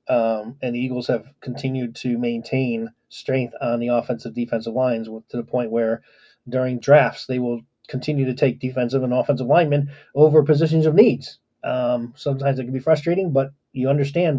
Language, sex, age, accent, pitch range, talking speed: English, male, 30-49, American, 120-145 Hz, 175 wpm